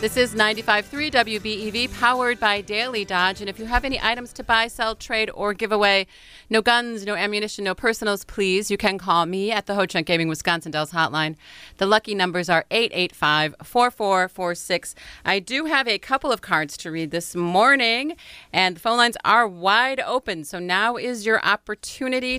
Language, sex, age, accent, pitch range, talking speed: English, female, 30-49, American, 180-225 Hz, 180 wpm